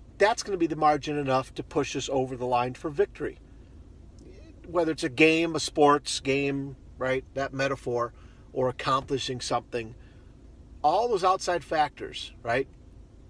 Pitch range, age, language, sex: 120-155 Hz, 50-69, English, male